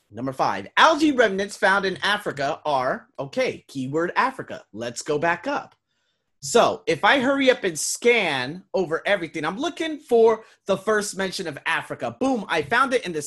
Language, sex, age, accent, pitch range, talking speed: English, male, 30-49, American, 145-230 Hz, 170 wpm